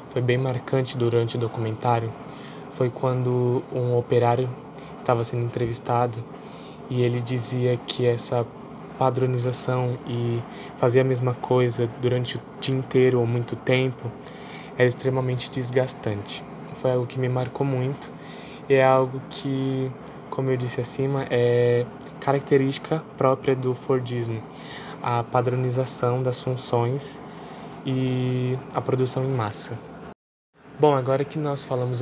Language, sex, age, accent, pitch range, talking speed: Portuguese, male, 10-29, Brazilian, 120-130 Hz, 125 wpm